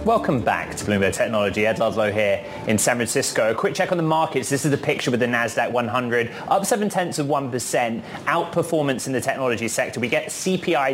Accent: British